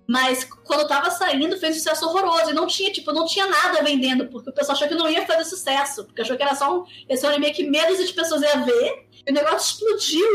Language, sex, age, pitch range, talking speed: Portuguese, female, 20-39, 265-325 Hz, 245 wpm